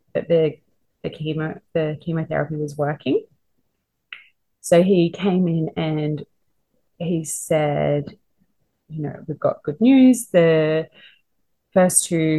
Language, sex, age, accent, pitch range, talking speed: English, female, 30-49, Australian, 145-170 Hz, 110 wpm